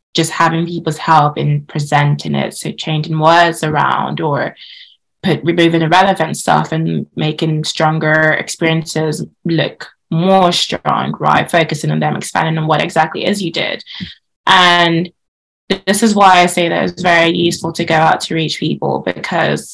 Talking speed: 155 wpm